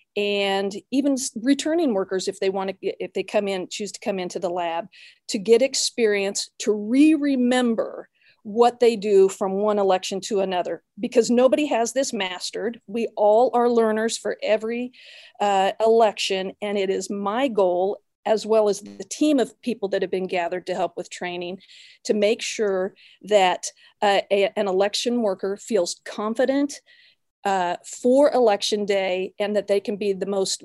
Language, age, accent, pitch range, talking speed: English, 40-59, American, 190-230 Hz, 170 wpm